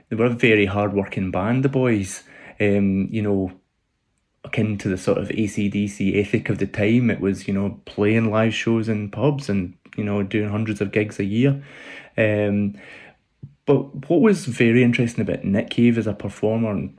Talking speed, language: 185 wpm, English